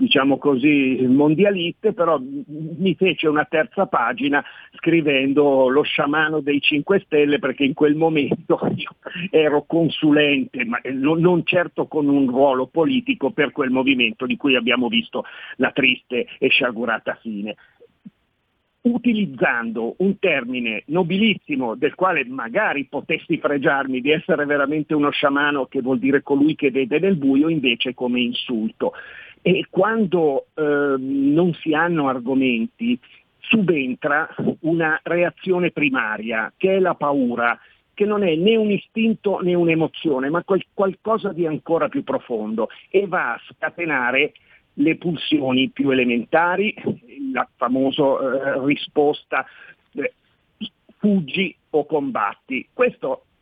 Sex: male